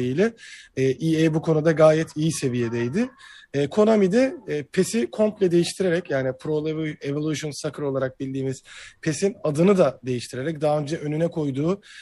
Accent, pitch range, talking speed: native, 140-180 Hz, 125 wpm